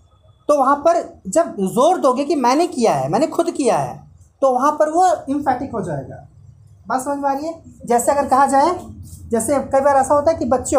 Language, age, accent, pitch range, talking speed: Hindi, 30-49, native, 215-295 Hz, 215 wpm